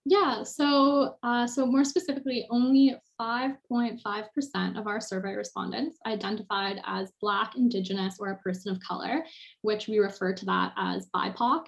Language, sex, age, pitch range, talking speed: English, female, 10-29, 210-260 Hz, 145 wpm